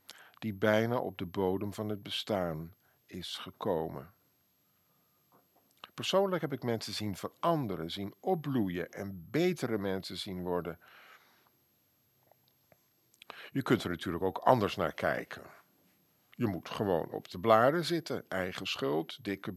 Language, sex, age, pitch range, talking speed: Dutch, male, 50-69, 100-155 Hz, 125 wpm